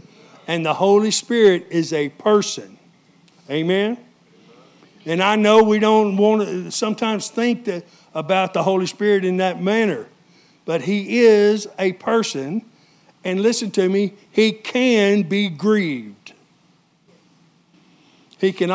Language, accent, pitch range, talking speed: English, American, 160-200 Hz, 125 wpm